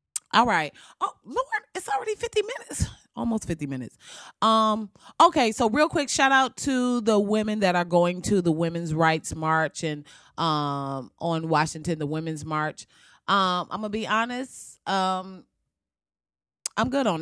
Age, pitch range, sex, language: 30-49, 165-225 Hz, female, English